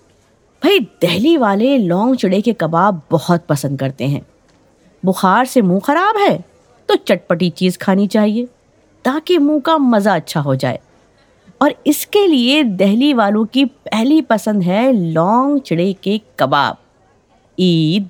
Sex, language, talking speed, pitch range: female, Urdu, 145 wpm, 175-270 Hz